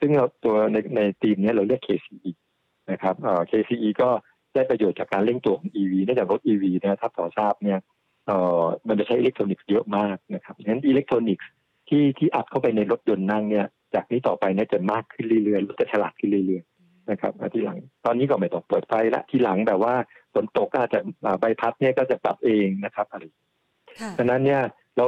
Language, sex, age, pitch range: Thai, male, 60-79, 95-120 Hz